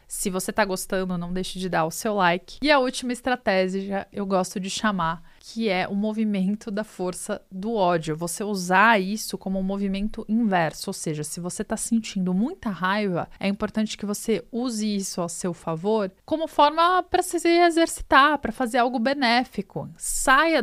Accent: Brazilian